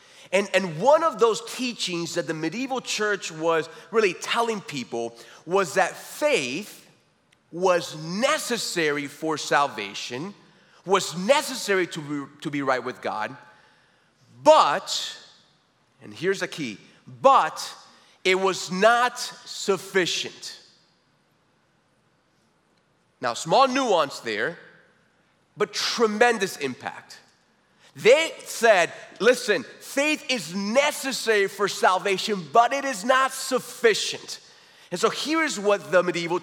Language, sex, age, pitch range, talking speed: English, male, 30-49, 180-255 Hz, 105 wpm